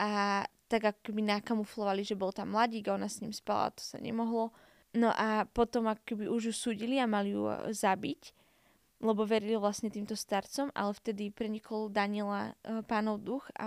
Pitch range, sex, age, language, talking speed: 200-225 Hz, female, 10-29, Slovak, 170 wpm